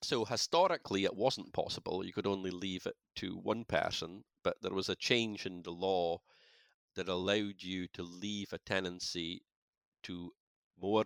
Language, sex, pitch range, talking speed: English, male, 85-100 Hz, 165 wpm